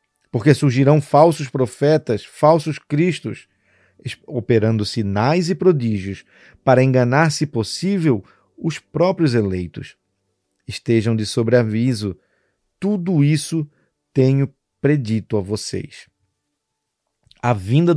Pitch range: 105-140 Hz